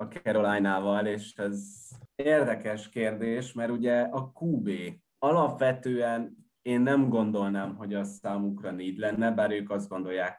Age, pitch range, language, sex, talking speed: 20-39, 100-115 Hz, Hungarian, male, 135 wpm